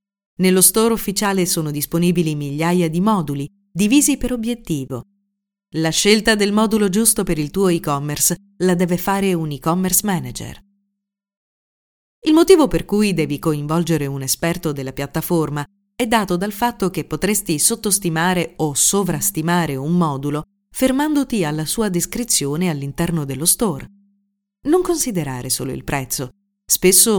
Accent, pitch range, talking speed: native, 160-210 Hz, 130 wpm